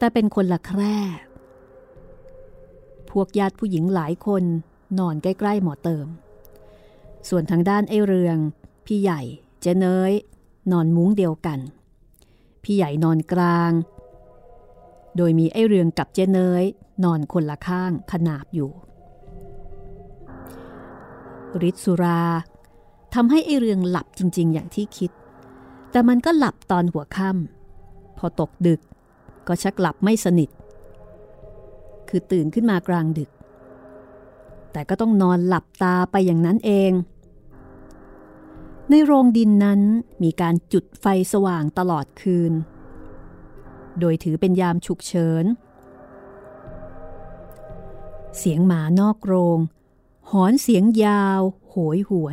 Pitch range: 160-195 Hz